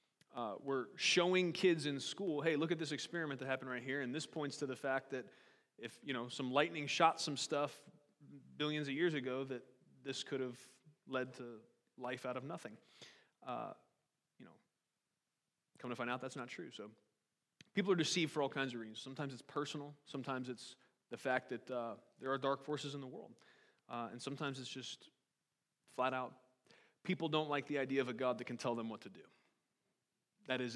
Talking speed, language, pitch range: 200 wpm, English, 125-145 Hz